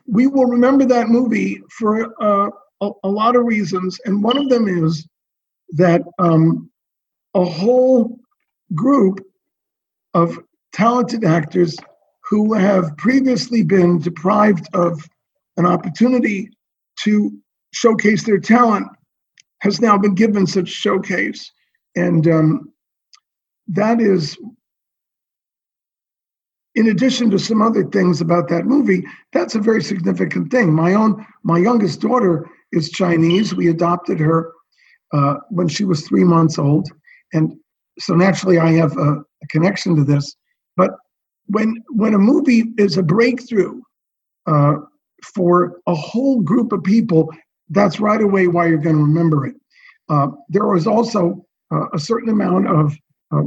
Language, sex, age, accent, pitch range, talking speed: English, male, 50-69, American, 170-230 Hz, 135 wpm